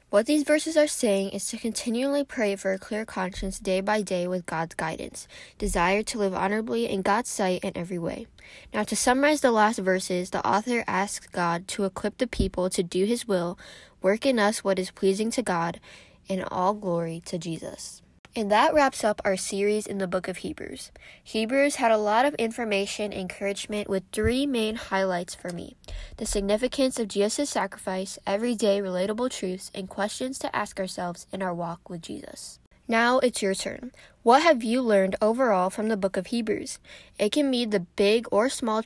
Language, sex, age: English, female, 10-29